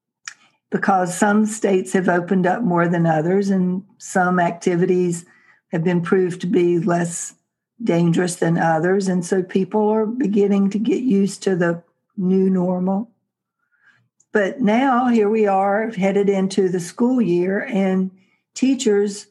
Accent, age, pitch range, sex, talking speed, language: American, 60-79, 185-215 Hz, female, 140 wpm, English